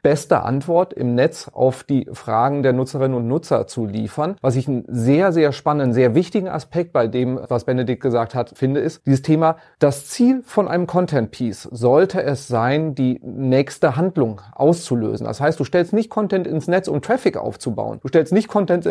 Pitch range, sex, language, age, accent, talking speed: 130-175 Hz, male, German, 30-49, German, 185 wpm